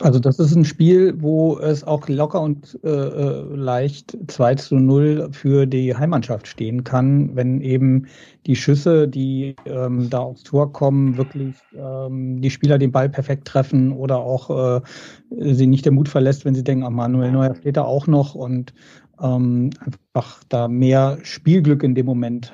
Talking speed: 170 wpm